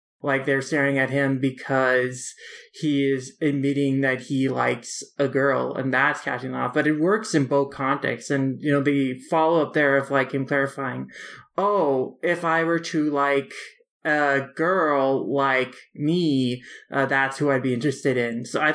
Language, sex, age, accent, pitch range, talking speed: English, male, 20-39, American, 130-150 Hz, 175 wpm